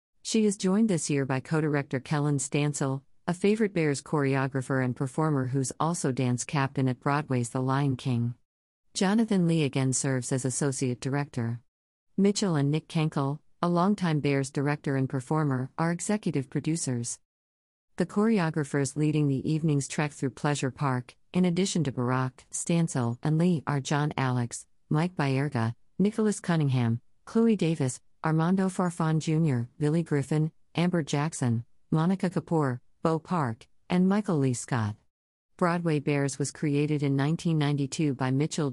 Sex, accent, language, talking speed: female, American, English, 145 wpm